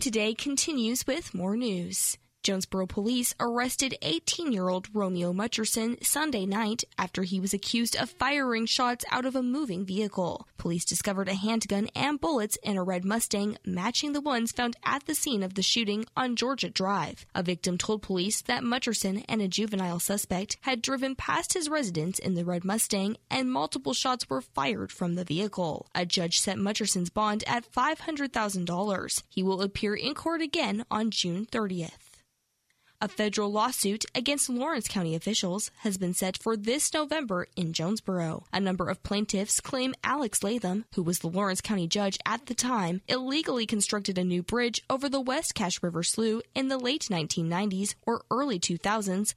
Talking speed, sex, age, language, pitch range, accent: 170 wpm, female, 10-29, English, 185-250 Hz, American